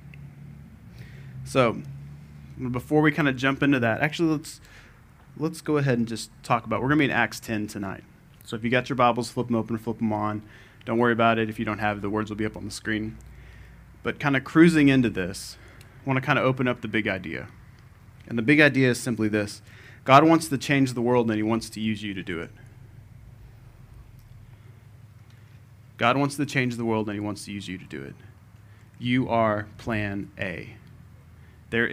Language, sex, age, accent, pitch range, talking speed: English, male, 30-49, American, 110-130 Hz, 210 wpm